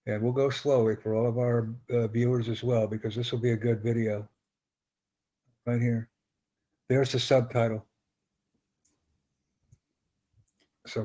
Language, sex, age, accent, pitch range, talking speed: English, male, 60-79, American, 115-140 Hz, 135 wpm